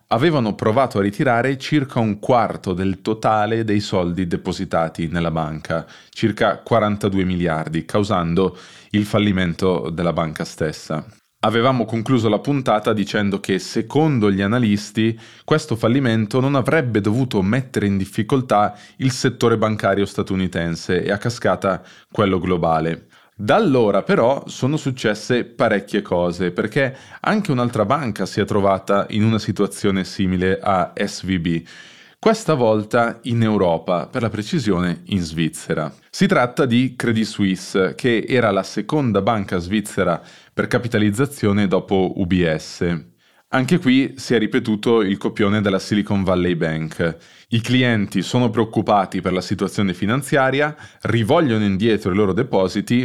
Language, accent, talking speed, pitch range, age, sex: Italian, native, 130 wpm, 95-115 Hz, 20-39, male